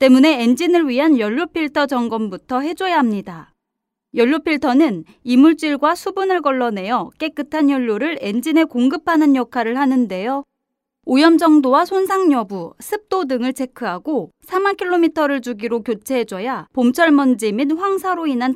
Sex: female